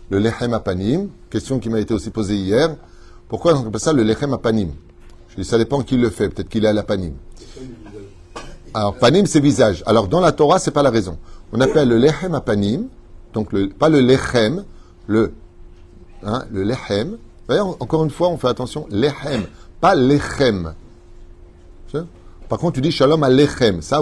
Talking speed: 185 wpm